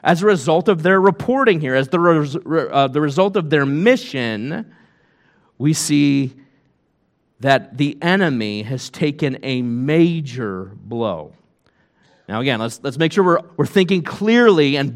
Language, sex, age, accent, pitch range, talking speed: English, male, 40-59, American, 130-185 Hz, 150 wpm